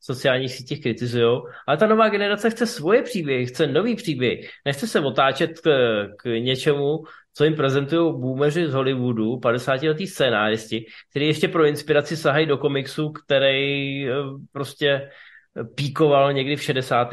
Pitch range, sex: 125-160 Hz, male